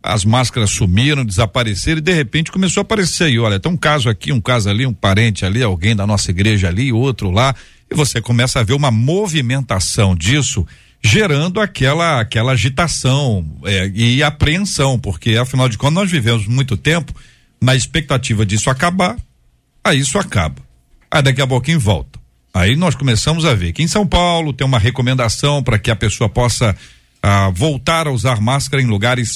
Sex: male